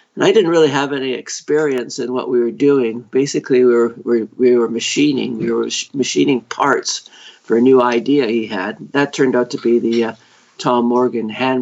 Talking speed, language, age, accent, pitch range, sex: 195 wpm, English, 50-69, American, 120-140 Hz, male